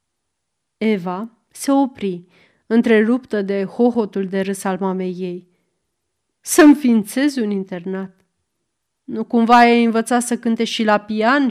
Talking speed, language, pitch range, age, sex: 120 wpm, Romanian, 190-265 Hz, 30-49, female